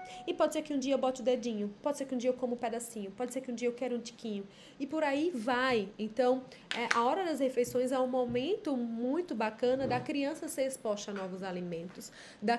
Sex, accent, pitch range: female, Brazilian, 220-275 Hz